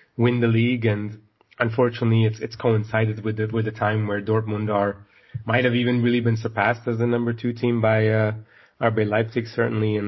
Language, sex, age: English, male, 30-49